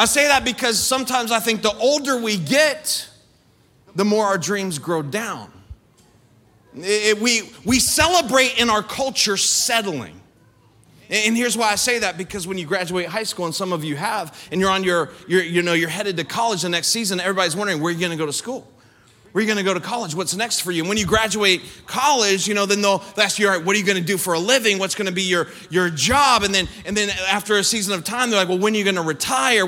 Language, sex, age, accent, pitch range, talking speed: English, male, 30-49, American, 185-235 Hz, 250 wpm